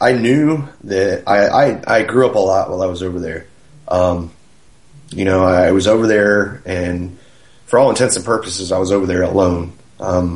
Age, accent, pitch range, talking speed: 30-49, American, 90-100 Hz, 195 wpm